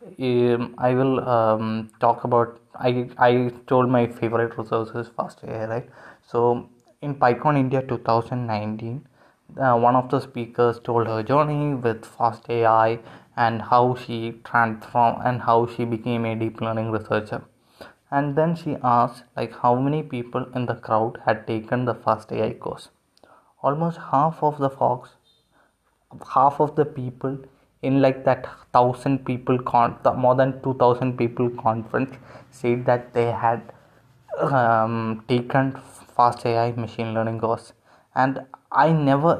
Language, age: Malayalam, 20-39